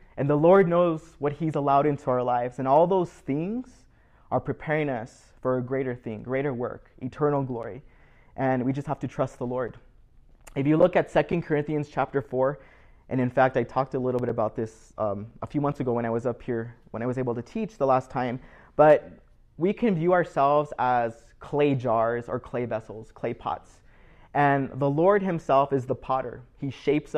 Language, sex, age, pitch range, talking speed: English, male, 20-39, 125-150 Hz, 205 wpm